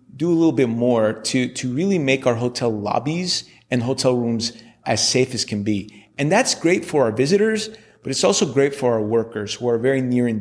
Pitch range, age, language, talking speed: 115-140 Hz, 30-49, English, 220 wpm